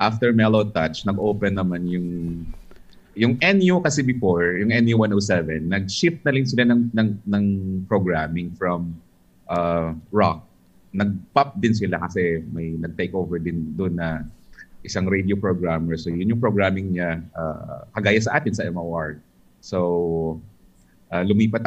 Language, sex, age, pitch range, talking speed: Filipino, male, 30-49, 85-110 Hz, 135 wpm